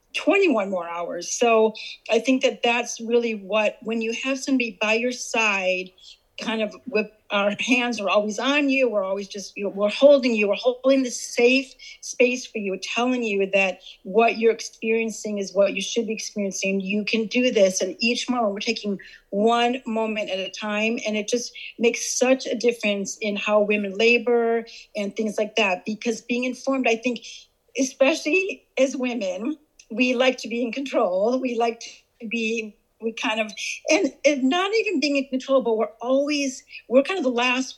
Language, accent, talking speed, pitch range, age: English, American, 185 wpm, 215-250 Hz, 40-59